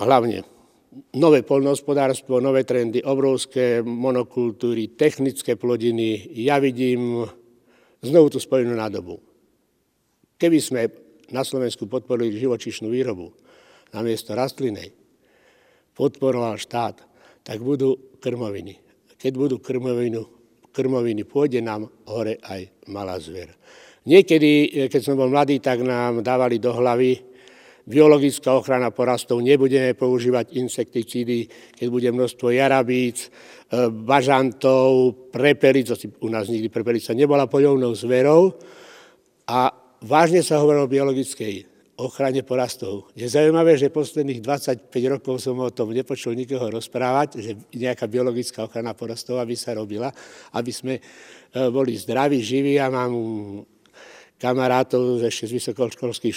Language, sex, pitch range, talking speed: Slovak, male, 120-135 Hz, 115 wpm